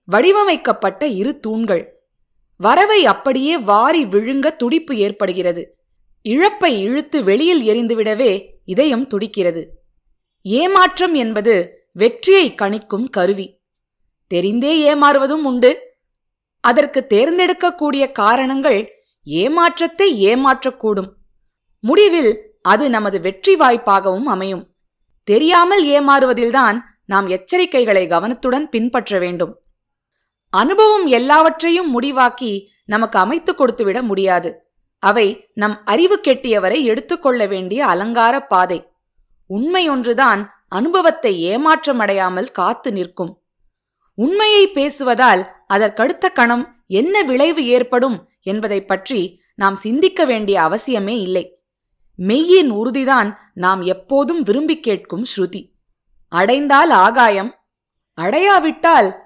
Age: 20-39